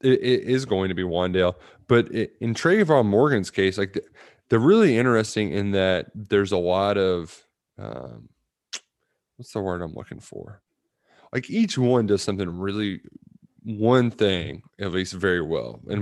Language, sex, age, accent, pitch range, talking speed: English, male, 20-39, American, 90-115 Hz, 155 wpm